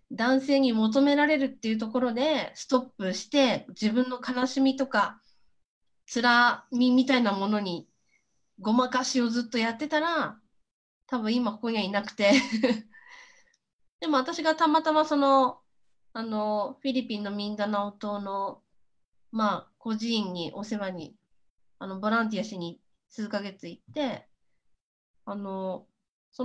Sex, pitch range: female, 205-260 Hz